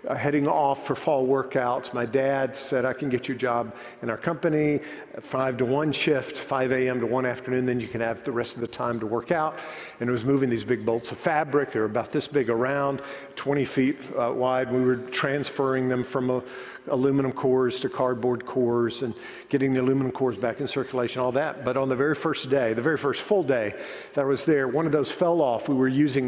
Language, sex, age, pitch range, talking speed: English, male, 50-69, 125-145 Hz, 230 wpm